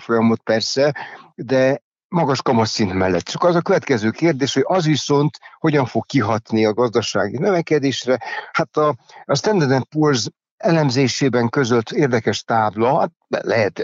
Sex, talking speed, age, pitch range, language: male, 130 wpm, 60-79, 115-145 Hz, Hungarian